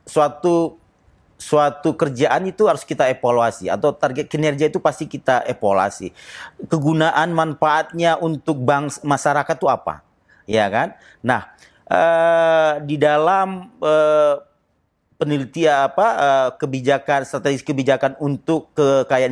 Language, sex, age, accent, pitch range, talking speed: Indonesian, male, 40-59, native, 145-195 Hz, 110 wpm